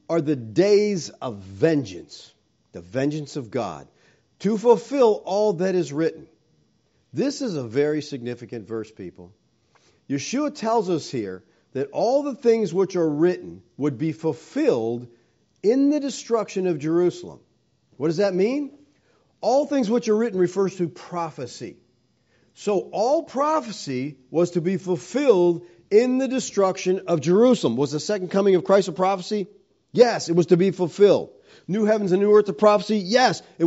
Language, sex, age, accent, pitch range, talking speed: English, male, 50-69, American, 145-210 Hz, 155 wpm